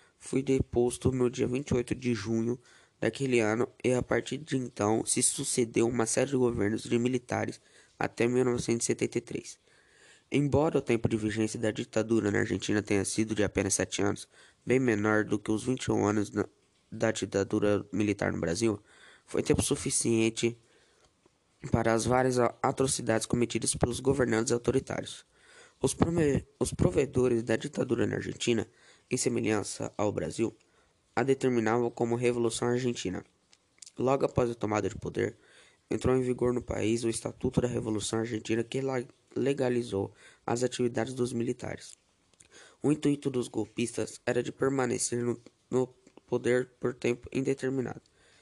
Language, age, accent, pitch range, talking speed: Portuguese, 10-29, Brazilian, 110-125 Hz, 140 wpm